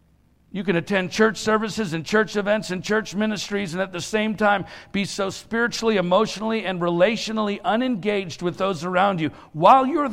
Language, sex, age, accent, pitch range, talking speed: English, male, 50-69, American, 170-215 Hz, 170 wpm